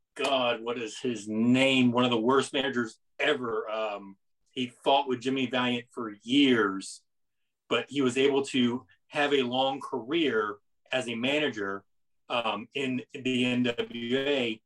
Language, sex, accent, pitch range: English, male, American, 120-150 Hz